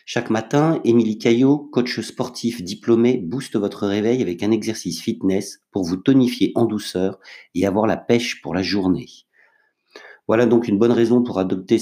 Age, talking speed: 50-69, 170 wpm